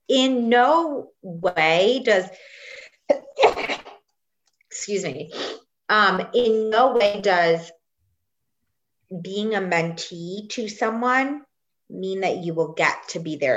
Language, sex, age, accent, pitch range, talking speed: English, female, 30-49, American, 155-210 Hz, 105 wpm